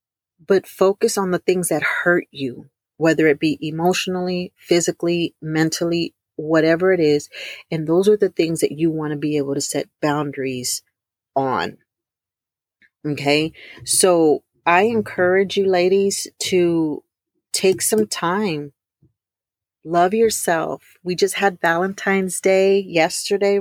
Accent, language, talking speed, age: American, English, 125 wpm, 40-59